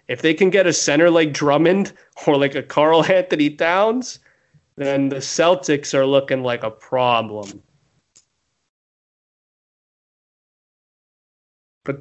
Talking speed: 115 wpm